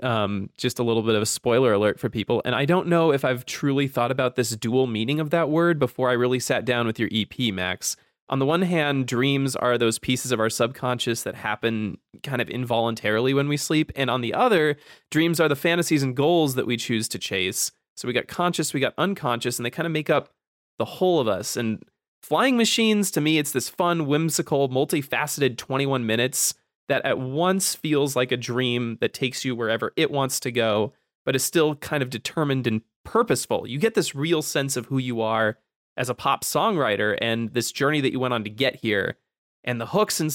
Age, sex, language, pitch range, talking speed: 20-39, male, English, 115-150 Hz, 220 wpm